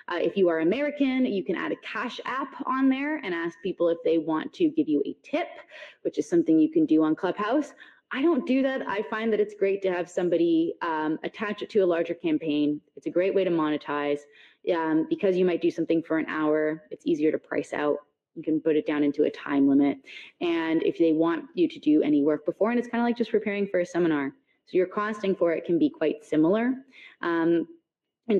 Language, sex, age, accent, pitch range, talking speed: English, female, 20-39, American, 160-235 Hz, 230 wpm